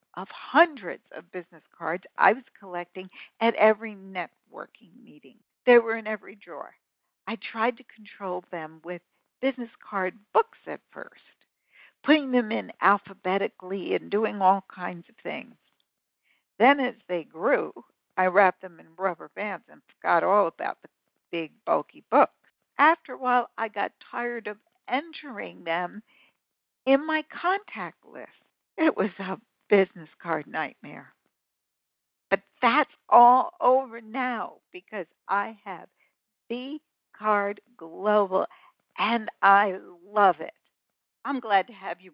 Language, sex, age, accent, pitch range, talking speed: English, female, 60-79, American, 180-250 Hz, 135 wpm